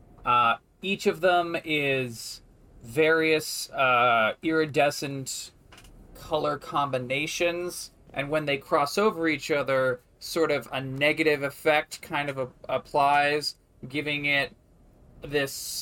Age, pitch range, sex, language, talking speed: 20-39, 130-160 Hz, male, English, 110 wpm